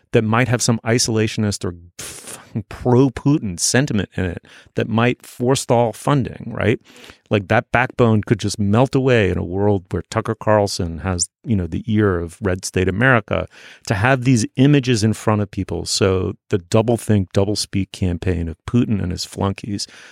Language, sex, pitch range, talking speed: English, male, 95-120 Hz, 165 wpm